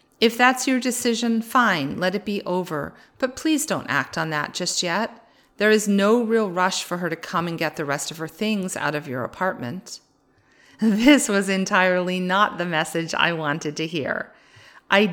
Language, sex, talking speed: English, female, 190 wpm